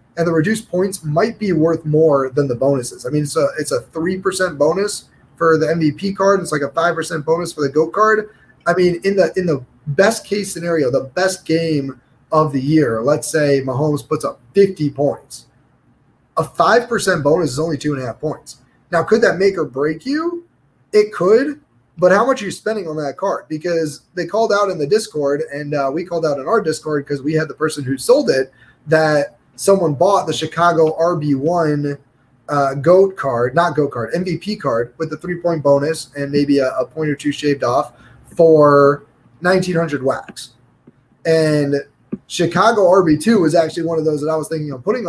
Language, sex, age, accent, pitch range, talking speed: English, male, 20-39, American, 145-185 Hz, 195 wpm